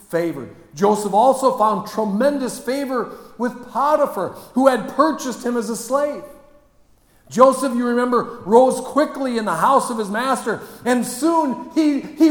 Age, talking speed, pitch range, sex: 50-69, 145 wpm, 205-265 Hz, male